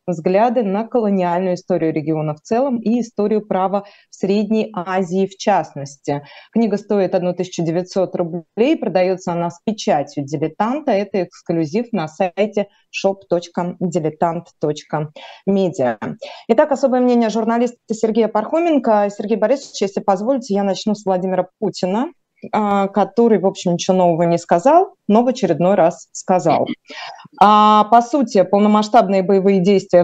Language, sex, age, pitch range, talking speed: Russian, female, 20-39, 175-220 Hz, 125 wpm